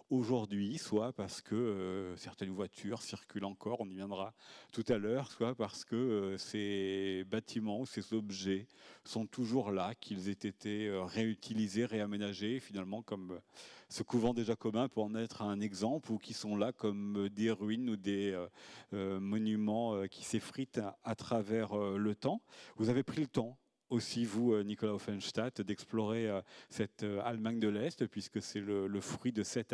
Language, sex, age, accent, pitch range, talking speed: French, male, 40-59, French, 100-115 Hz, 155 wpm